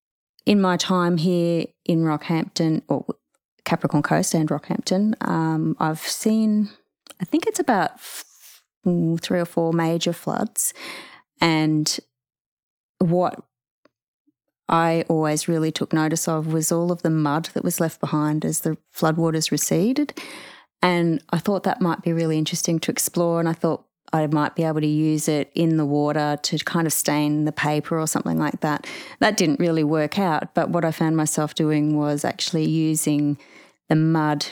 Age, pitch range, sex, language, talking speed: 30-49, 150-170 Hz, female, English, 160 wpm